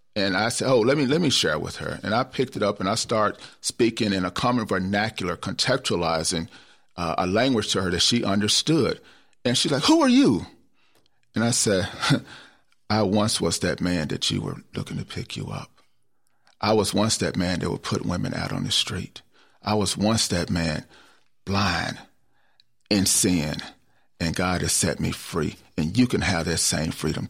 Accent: American